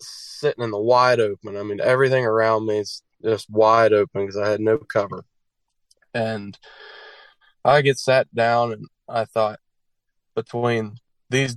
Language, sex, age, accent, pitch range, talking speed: English, male, 20-39, American, 110-130 Hz, 150 wpm